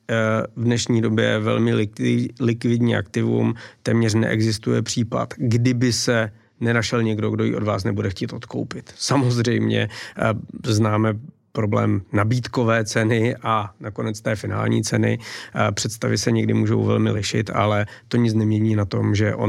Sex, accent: male, native